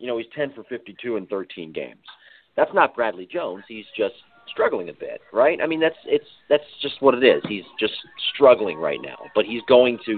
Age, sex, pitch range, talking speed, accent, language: 40-59, male, 110-140 Hz, 220 wpm, American, English